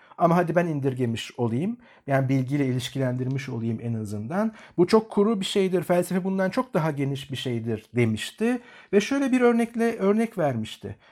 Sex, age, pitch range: male, 50-69, 135-195 Hz